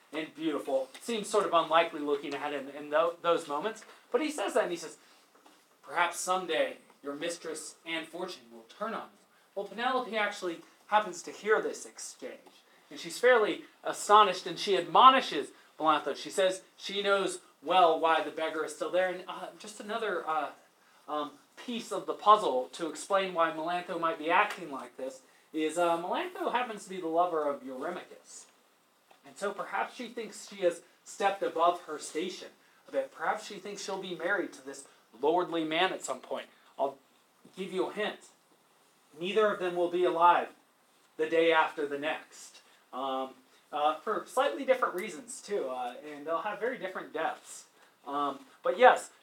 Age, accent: 30-49, American